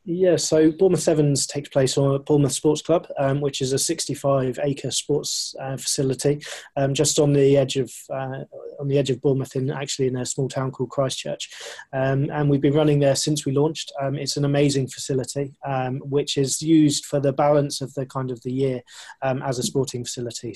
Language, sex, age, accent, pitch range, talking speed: English, male, 20-39, British, 130-145 Hz, 210 wpm